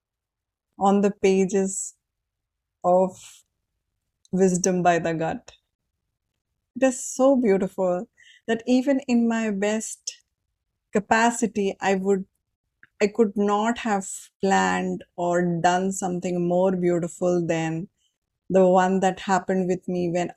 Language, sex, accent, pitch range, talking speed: English, female, Indian, 175-205 Hz, 110 wpm